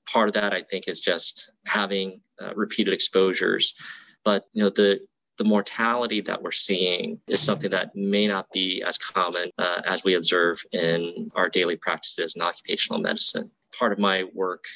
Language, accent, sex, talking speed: English, American, male, 175 wpm